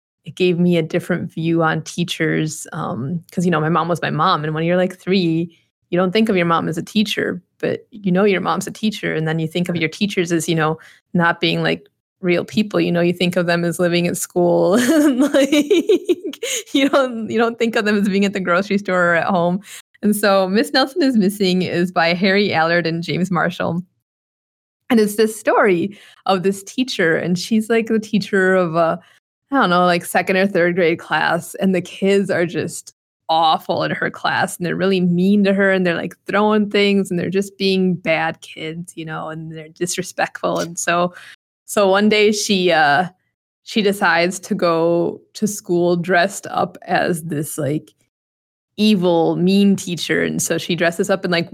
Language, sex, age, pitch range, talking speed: English, female, 20-39, 170-200 Hz, 205 wpm